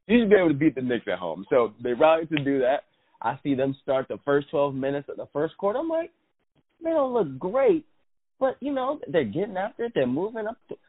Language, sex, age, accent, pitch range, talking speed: English, male, 30-49, American, 120-200 Hz, 250 wpm